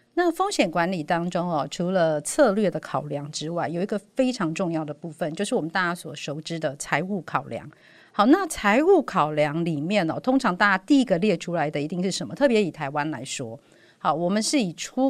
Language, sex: Chinese, female